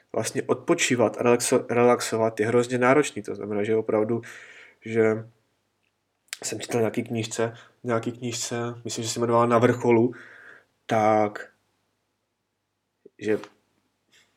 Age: 20-39